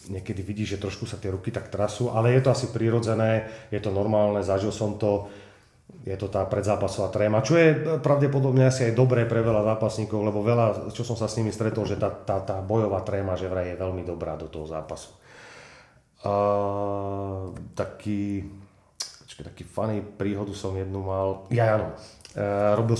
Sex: male